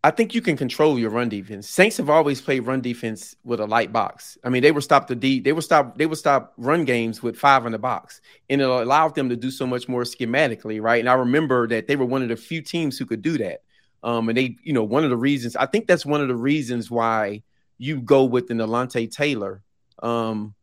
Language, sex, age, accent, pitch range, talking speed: English, male, 30-49, American, 115-145 Hz, 260 wpm